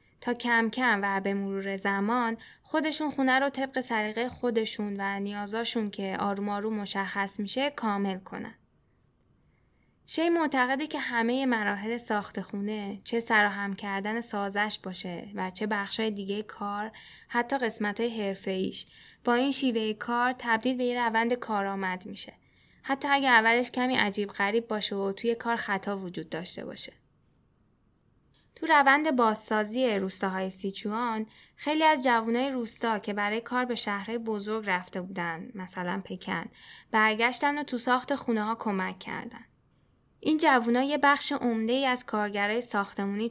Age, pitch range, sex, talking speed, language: 10-29, 205-245 Hz, female, 140 wpm, Persian